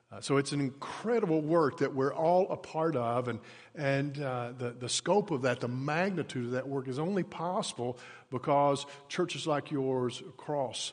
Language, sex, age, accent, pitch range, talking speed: English, male, 50-69, American, 140-180 Hz, 175 wpm